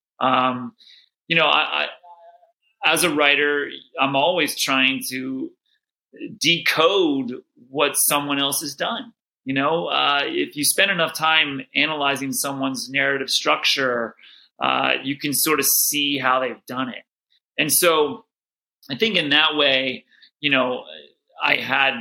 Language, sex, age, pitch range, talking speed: English, male, 30-49, 130-175 Hz, 140 wpm